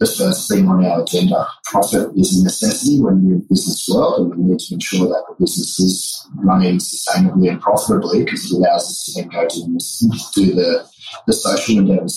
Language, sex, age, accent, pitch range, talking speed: English, male, 30-49, Australian, 90-115 Hz, 205 wpm